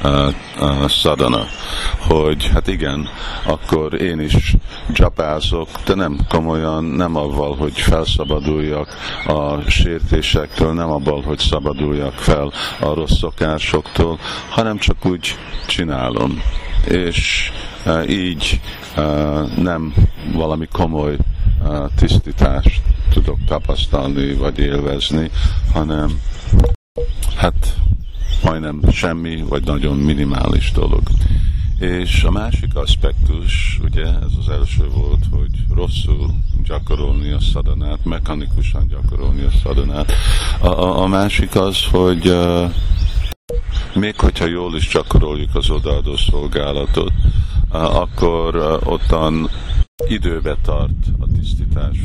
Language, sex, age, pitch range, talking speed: Hungarian, male, 50-69, 75-90 Hz, 105 wpm